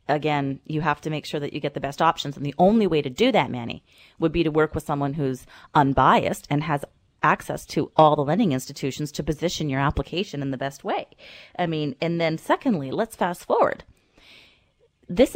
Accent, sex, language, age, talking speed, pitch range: American, female, English, 30-49, 205 wpm, 150-210 Hz